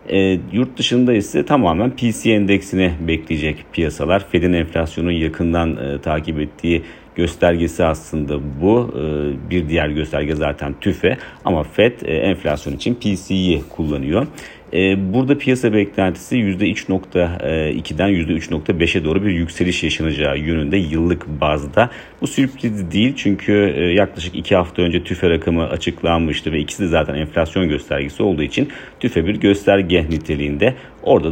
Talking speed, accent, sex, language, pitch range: 130 wpm, native, male, Turkish, 80-95 Hz